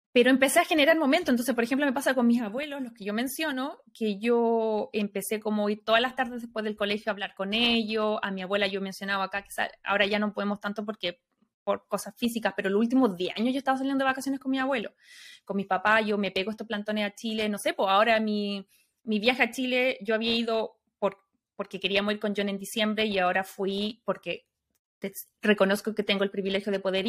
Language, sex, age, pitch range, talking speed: Spanish, female, 20-39, 200-255 Hz, 220 wpm